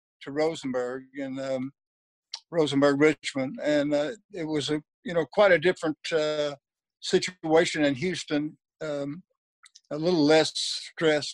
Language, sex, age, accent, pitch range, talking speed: English, male, 60-79, American, 145-180 Hz, 125 wpm